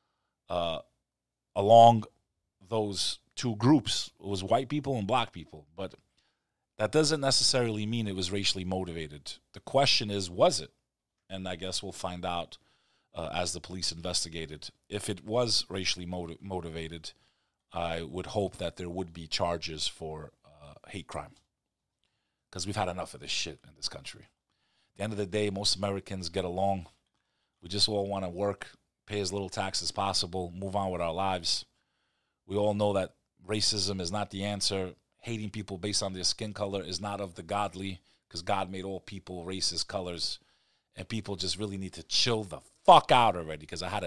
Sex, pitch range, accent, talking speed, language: male, 90-110 Hz, American, 180 wpm, English